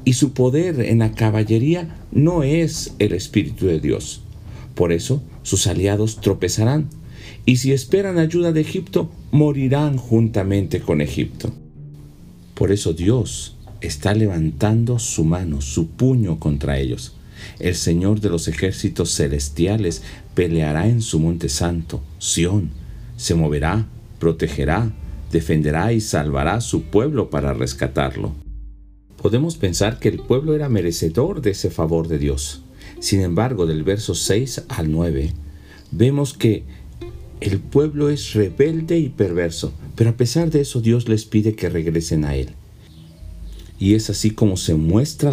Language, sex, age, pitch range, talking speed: Spanish, male, 50-69, 80-120 Hz, 140 wpm